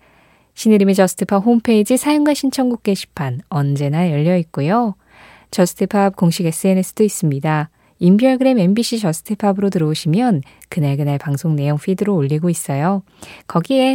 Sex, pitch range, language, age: female, 150-215 Hz, Korean, 20-39